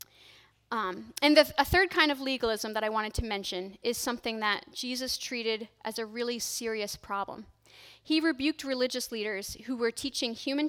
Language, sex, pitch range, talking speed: English, female, 195-240 Hz, 170 wpm